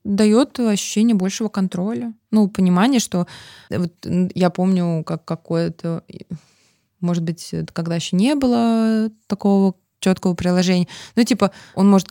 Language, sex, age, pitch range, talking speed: Russian, female, 20-39, 170-210 Hz, 125 wpm